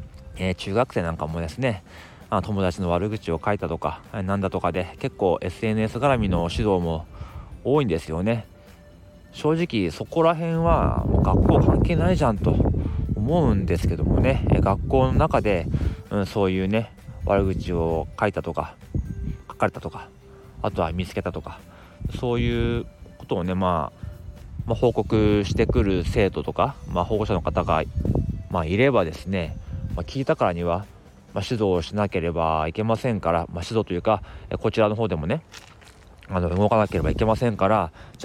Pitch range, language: 85-110 Hz, Japanese